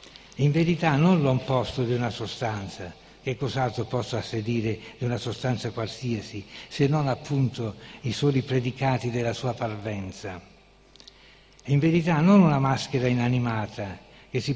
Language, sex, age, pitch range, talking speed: Italian, male, 60-79, 110-135 Hz, 130 wpm